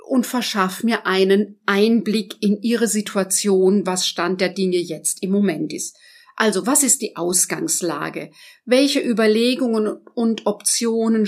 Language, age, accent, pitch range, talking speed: German, 50-69, German, 200-250 Hz, 135 wpm